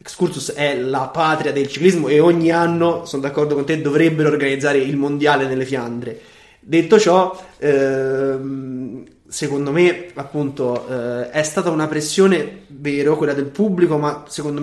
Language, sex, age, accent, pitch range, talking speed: Italian, male, 20-39, native, 135-155 Hz, 150 wpm